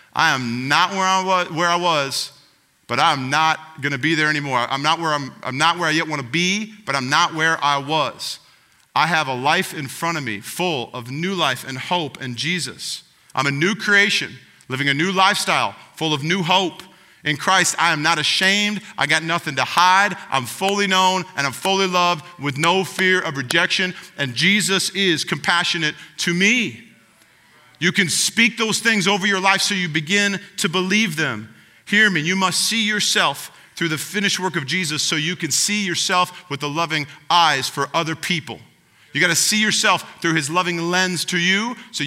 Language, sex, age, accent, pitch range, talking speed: English, male, 40-59, American, 140-185 Hz, 195 wpm